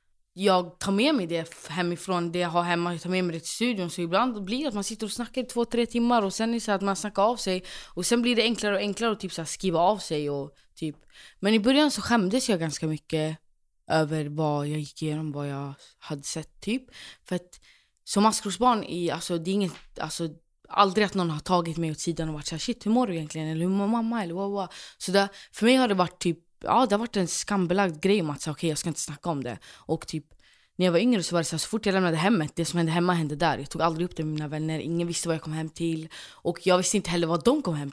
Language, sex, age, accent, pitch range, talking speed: Swedish, female, 20-39, native, 160-200 Hz, 270 wpm